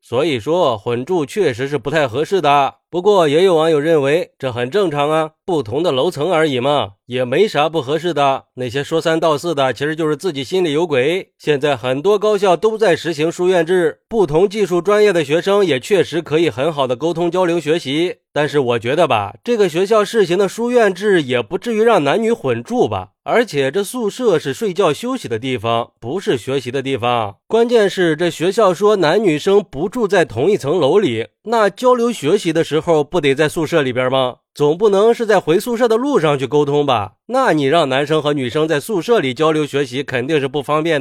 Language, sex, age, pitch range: Chinese, male, 30-49, 145-195 Hz